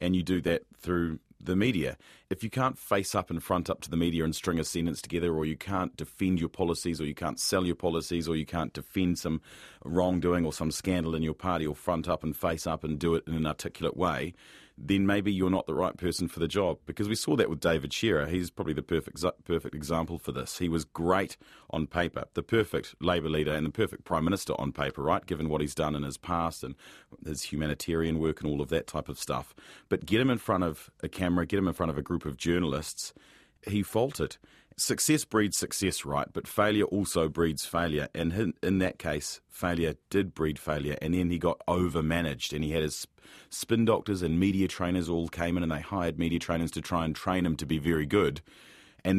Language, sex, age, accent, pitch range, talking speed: English, male, 40-59, Australian, 80-90 Hz, 230 wpm